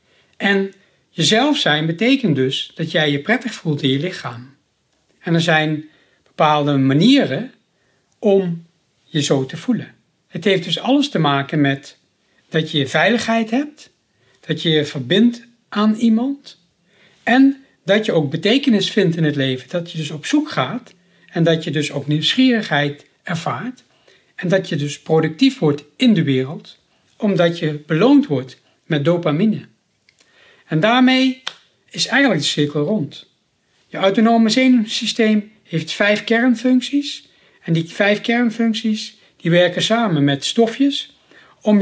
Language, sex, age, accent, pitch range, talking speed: Dutch, male, 60-79, Dutch, 155-230 Hz, 140 wpm